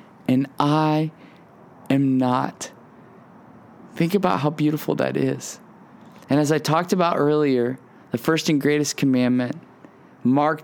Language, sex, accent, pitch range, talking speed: English, male, American, 120-155 Hz, 125 wpm